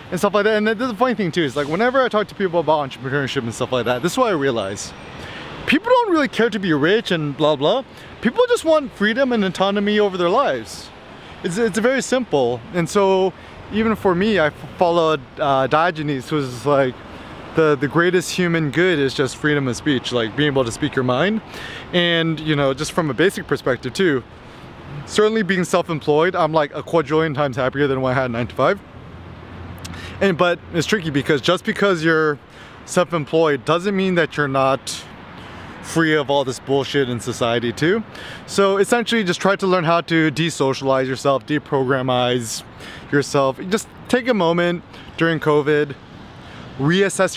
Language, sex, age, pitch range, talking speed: English, male, 20-39, 135-190 Hz, 185 wpm